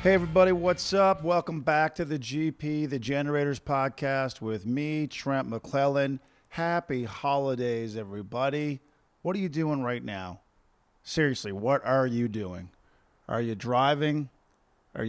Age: 40-59